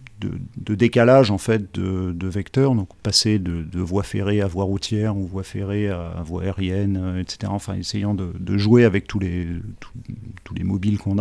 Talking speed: 200 wpm